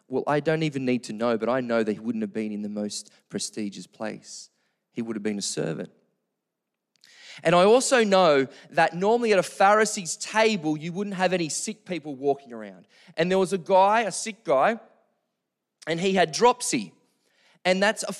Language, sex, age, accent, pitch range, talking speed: English, male, 20-39, Australian, 155-195 Hz, 195 wpm